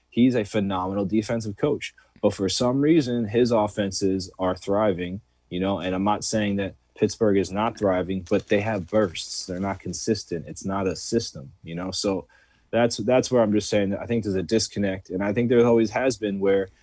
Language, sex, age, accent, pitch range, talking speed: English, male, 20-39, American, 95-110 Hz, 205 wpm